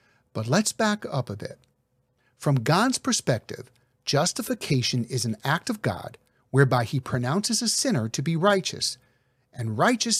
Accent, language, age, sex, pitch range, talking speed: American, English, 50-69, male, 125-190 Hz, 145 wpm